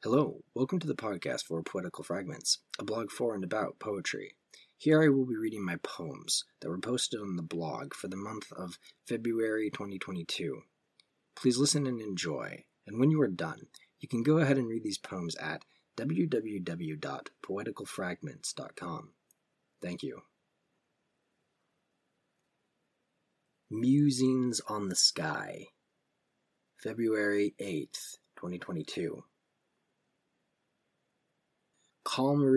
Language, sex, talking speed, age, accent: English, male, 115 wpm, 30-49, American